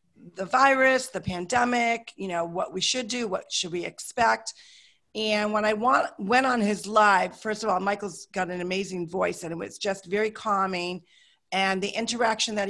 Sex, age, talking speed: female, 40-59, 190 wpm